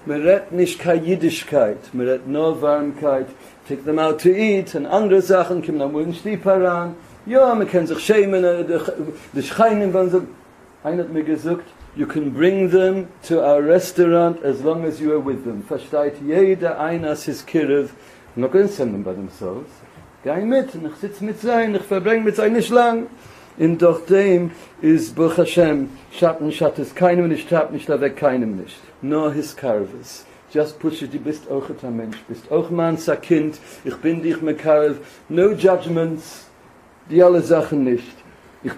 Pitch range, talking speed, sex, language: 140-180 Hz, 95 wpm, male, English